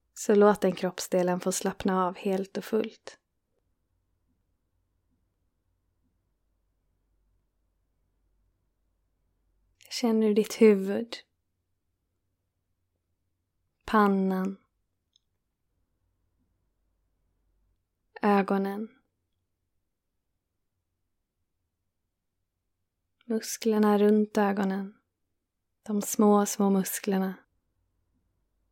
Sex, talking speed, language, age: female, 50 wpm, Swedish, 20-39